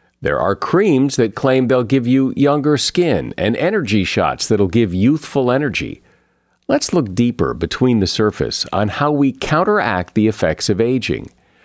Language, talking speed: English, 160 wpm